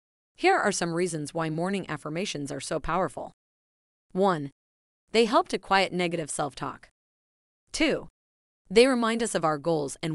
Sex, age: female, 30-49